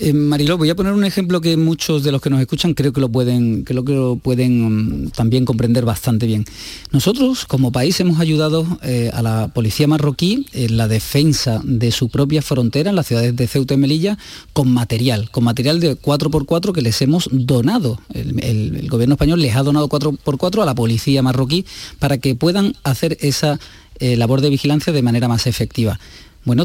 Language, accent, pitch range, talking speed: Spanish, Spanish, 120-155 Hz, 195 wpm